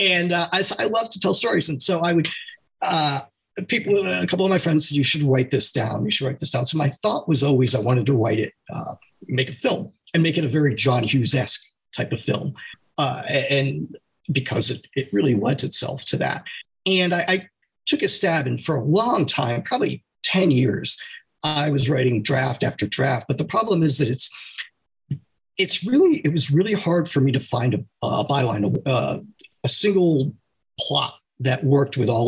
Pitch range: 125-170 Hz